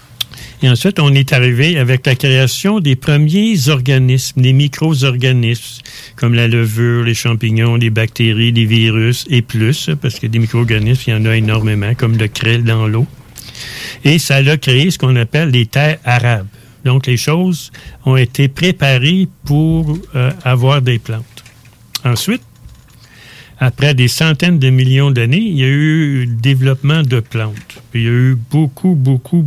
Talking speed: 165 wpm